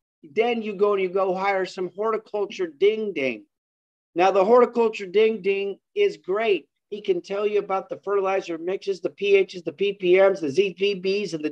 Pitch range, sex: 185-220 Hz, male